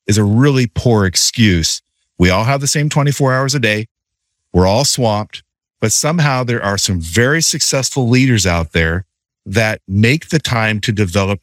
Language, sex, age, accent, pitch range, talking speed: English, male, 50-69, American, 100-140 Hz, 175 wpm